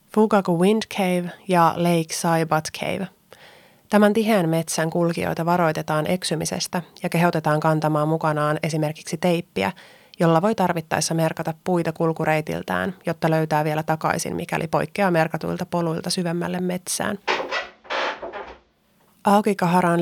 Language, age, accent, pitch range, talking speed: Finnish, 30-49, native, 160-180 Hz, 110 wpm